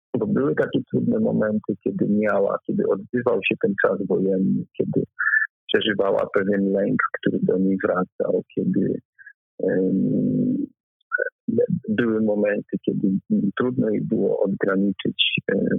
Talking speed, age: 115 wpm, 50-69